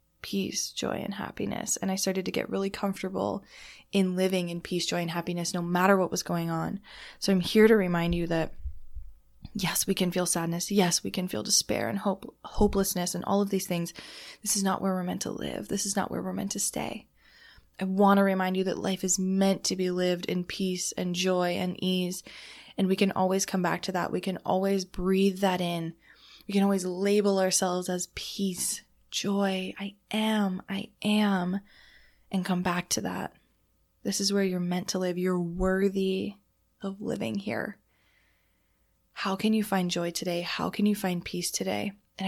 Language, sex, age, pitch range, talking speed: English, female, 20-39, 180-200 Hz, 195 wpm